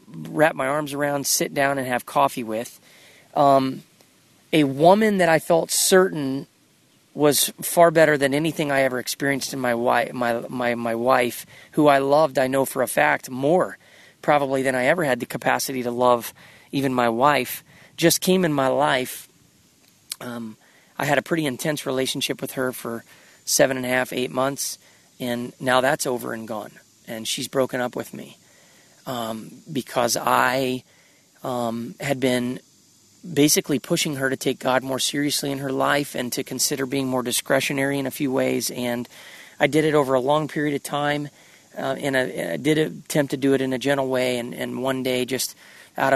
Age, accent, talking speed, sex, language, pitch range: 30-49, American, 180 wpm, male, English, 125-145 Hz